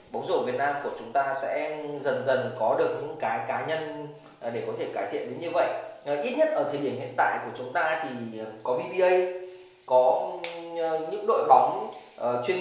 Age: 20-39